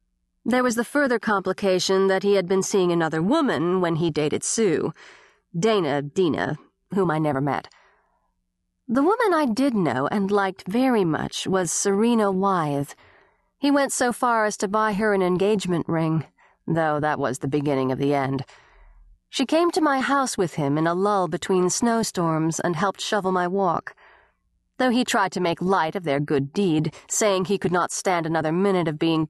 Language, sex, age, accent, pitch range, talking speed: English, female, 40-59, American, 160-210 Hz, 180 wpm